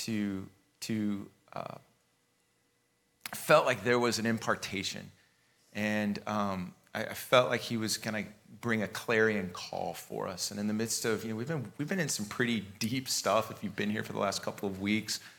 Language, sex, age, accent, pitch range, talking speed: English, male, 30-49, American, 100-115 Hz, 195 wpm